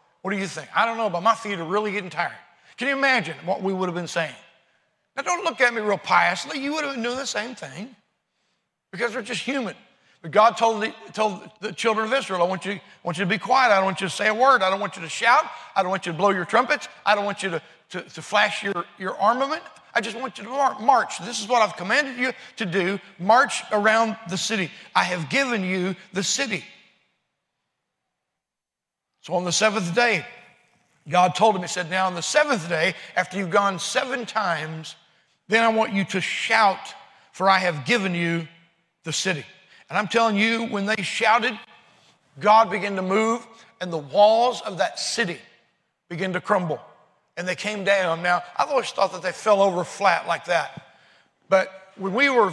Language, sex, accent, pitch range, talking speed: English, male, American, 175-220 Hz, 215 wpm